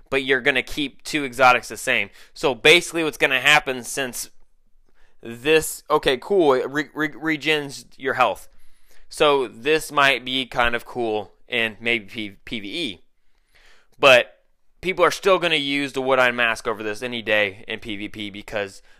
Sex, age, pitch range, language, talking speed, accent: male, 20-39, 125-170 Hz, English, 160 wpm, American